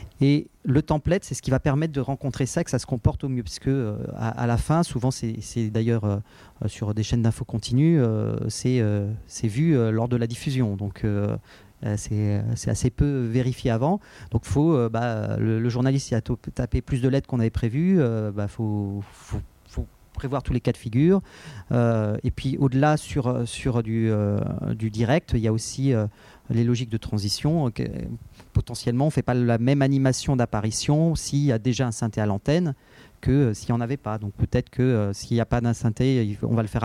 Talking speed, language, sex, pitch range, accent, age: 220 wpm, French, male, 110-135 Hz, French, 40-59